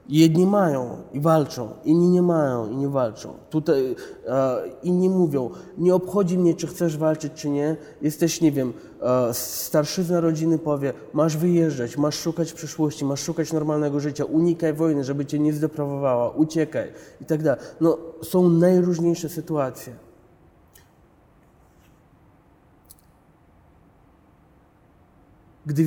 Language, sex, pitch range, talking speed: Polish, male, 140-170 Hz, 125 wpm